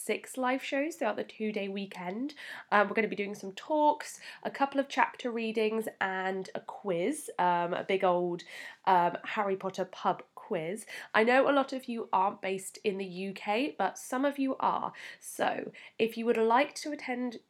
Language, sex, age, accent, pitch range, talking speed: English, female, 10-29, British, 195-240 Hz, 190 wpm